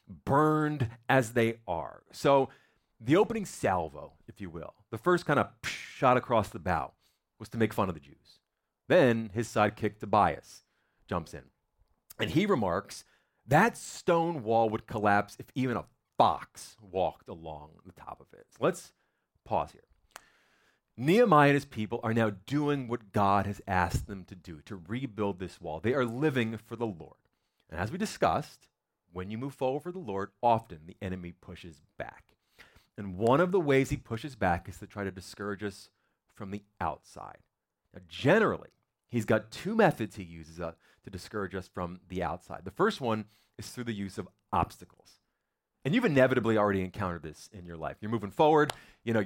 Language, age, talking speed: English, 30-49, 180 wpm